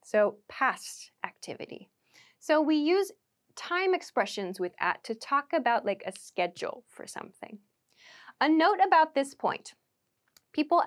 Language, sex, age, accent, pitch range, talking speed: English, female, 10-29, American, 210-305 Hz, 135 wpm